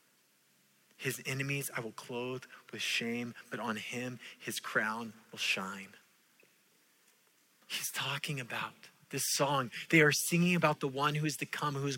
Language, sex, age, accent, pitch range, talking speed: English, male, 20-39, American, 140-185 Hz, 155 wpm